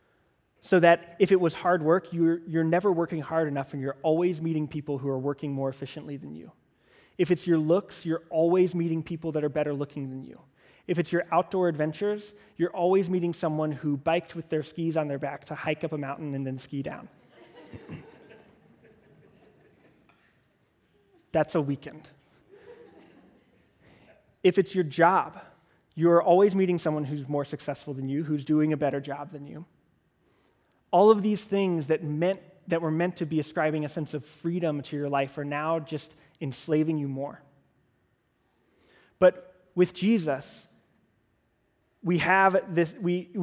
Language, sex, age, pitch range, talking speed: English, male, 20-39, 150-180 Hz, 165 wpm